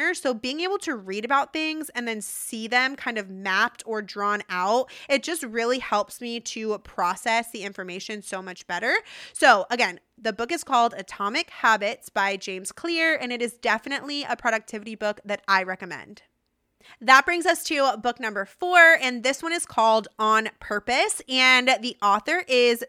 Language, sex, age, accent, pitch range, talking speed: English, female, 20-39, American, 215-280 Hz, 180 wpm